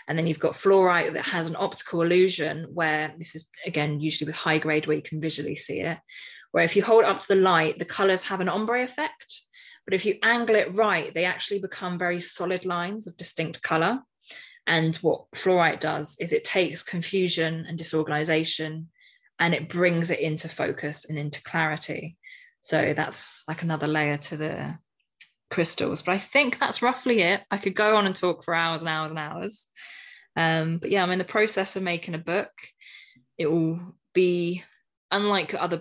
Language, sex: English, female